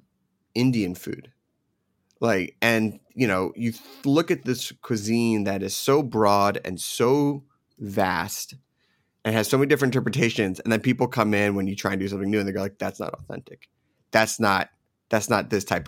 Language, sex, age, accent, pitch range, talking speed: English, male, 30-49, American, 100-125 Hz, 180 wpm